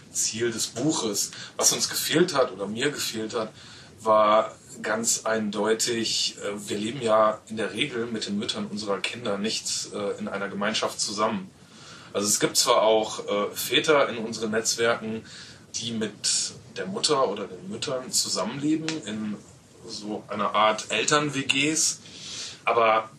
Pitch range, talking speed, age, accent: 105-120 Hz, 135 wpm, 30-49, German